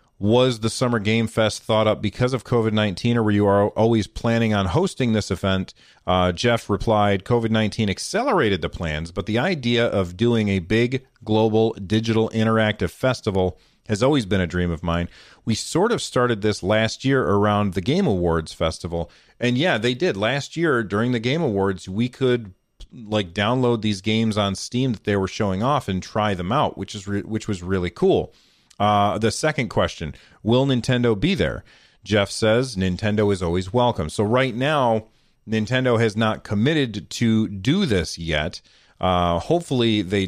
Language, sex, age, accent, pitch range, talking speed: English, male, 40-59, American, 100-120 Hz, 180 wpm